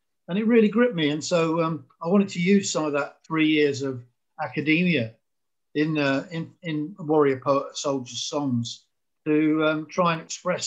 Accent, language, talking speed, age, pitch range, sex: British, English, 180 wpm, 50-69, 130-155 Hz, male